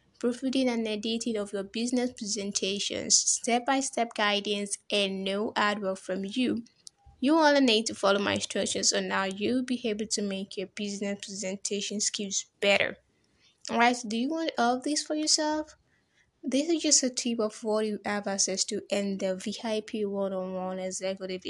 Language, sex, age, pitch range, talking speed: English, female, 10-29, 195-240 Hz, 160 wpm